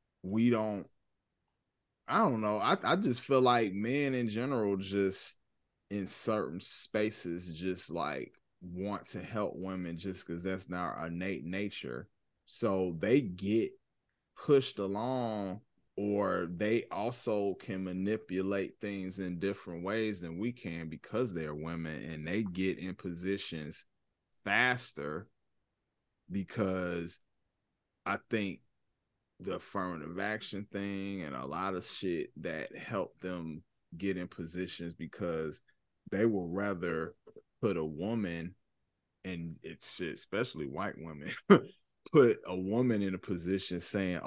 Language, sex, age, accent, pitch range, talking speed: English, male, 20-39, American, 90-105 Hz, 125 wpm